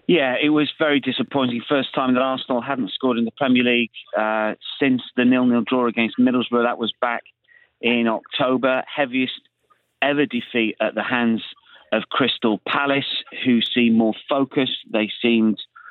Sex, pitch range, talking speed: male, 115-135 Hz, 160 wpm